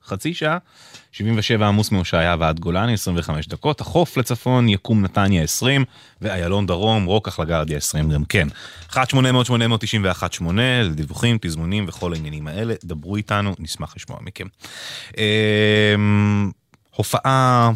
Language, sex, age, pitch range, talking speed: English, male, 20-39, 85-110 Hz, 110 wpm